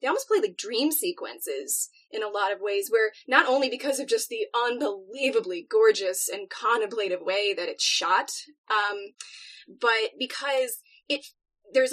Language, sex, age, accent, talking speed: English, female, 20-39, American, 155 wpm